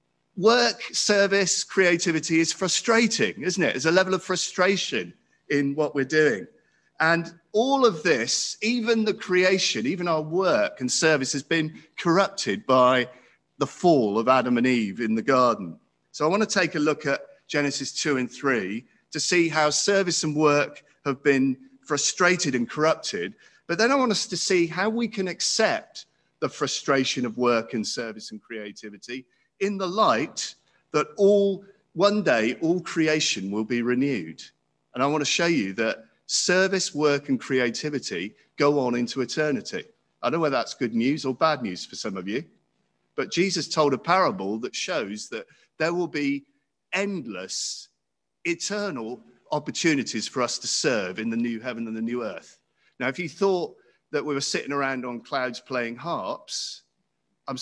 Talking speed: 170 wpm